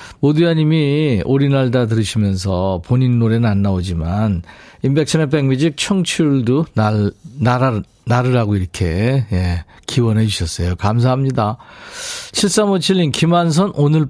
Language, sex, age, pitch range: Korean, male, 50-69, 105-155 Hz